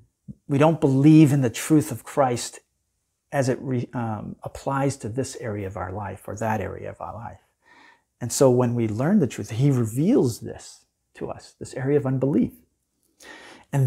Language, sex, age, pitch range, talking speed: English, male, 40-59, 115-145 Hz, 175 wpm